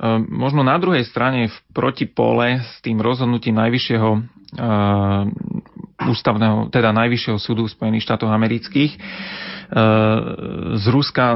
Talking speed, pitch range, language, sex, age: 90 wpm, 105-120 Hz, Slovak, male, 30-49